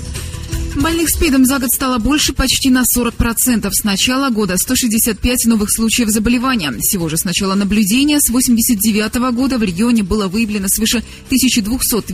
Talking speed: 150 wpm